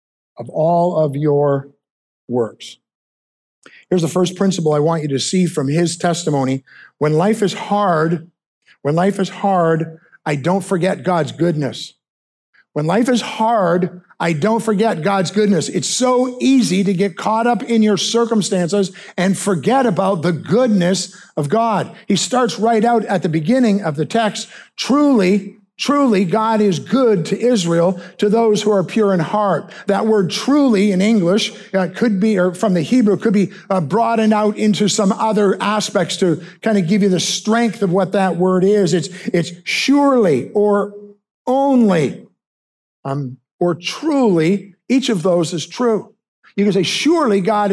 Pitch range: 175-220 Hz